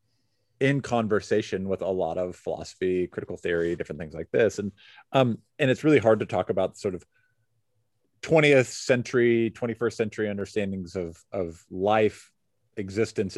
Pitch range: 100-120 Hz